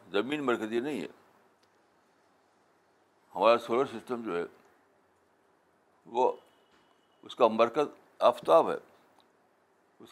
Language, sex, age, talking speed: Urdu, male, 60-79, 95 wpm